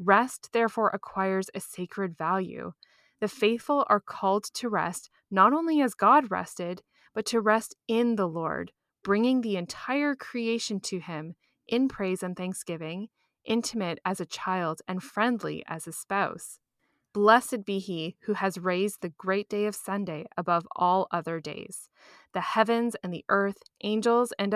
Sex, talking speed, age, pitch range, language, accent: female, 155 wpm, 10-29, 180-225 Hz, English, American